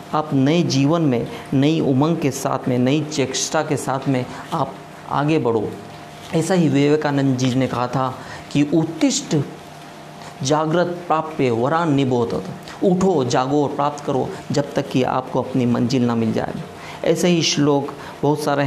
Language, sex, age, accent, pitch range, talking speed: Hindi, male, 50-69, native, 135-165 Hz, 160 wpm